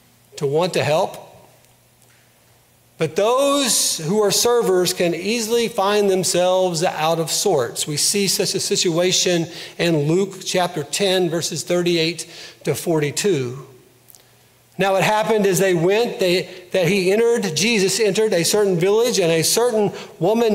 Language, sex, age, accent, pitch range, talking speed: English, male, 50-69, American, 170-205 Hz, 140 wpm